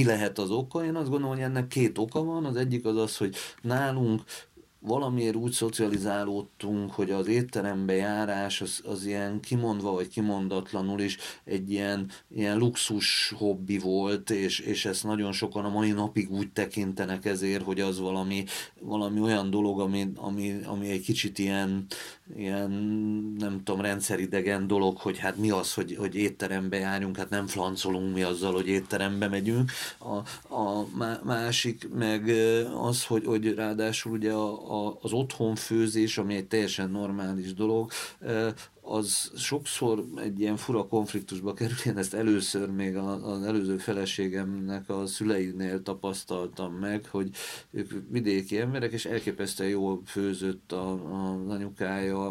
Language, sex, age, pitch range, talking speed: Hungarian, male, 30-49, 95-110 Hz, 140 wpm